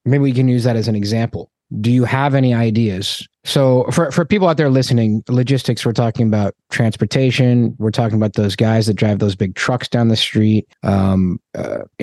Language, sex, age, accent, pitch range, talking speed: English, male, 20-39, American, 105-125 Hz, 200 wpm